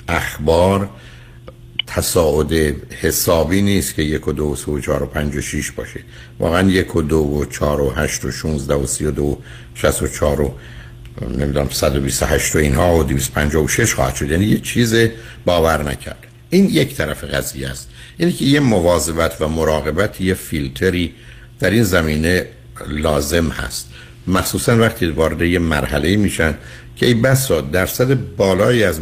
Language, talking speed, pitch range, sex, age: Persian, 160 wpm, 75-105 Hz, male, 60-79